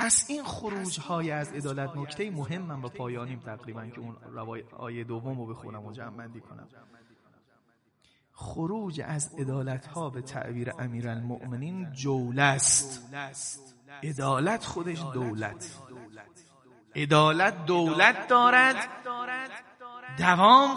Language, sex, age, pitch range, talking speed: Persian, male, 30-49, 135-205 Hz, 105 wpm